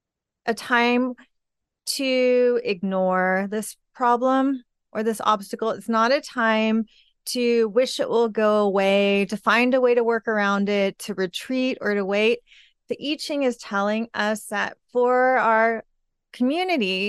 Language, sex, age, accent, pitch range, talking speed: English, female, 30-49, American, 210-255 Hz, 150 wpm